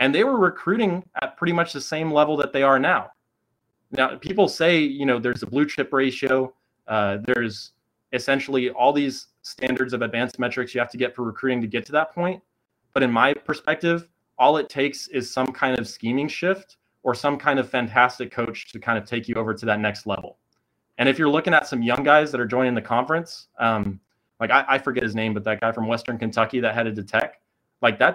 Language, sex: English, male